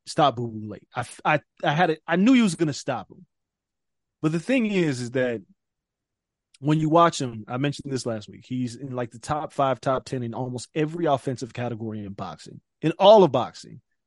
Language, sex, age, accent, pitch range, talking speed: English, male, 20-39, American, 125-195 Hz, 215 wpm